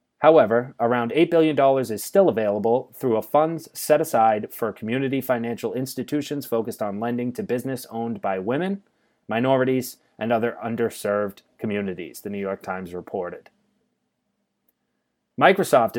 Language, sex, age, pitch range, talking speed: English, male, 30-49, 115-140 Hz, 130 wpm